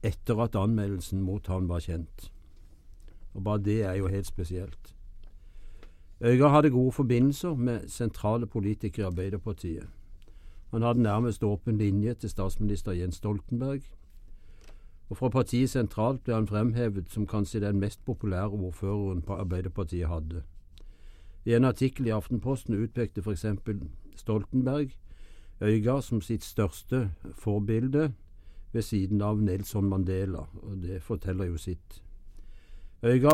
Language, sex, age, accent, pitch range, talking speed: English, male, 60-79, Norwegian, 90-115 Hz, 130 wpm